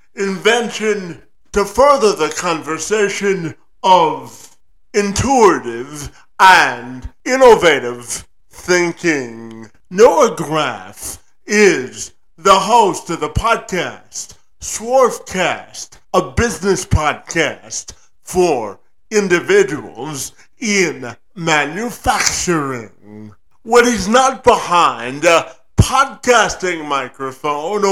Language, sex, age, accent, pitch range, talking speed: English, male, 50-69, American, 140-210 Hz, 70 wpm